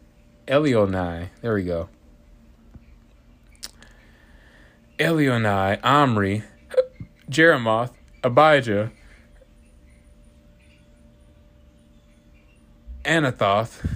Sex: male